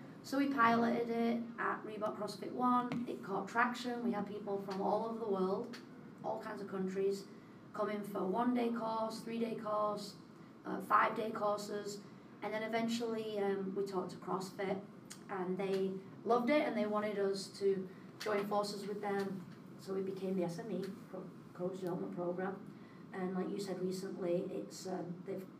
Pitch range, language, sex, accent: 185-220 Hz, English, female, British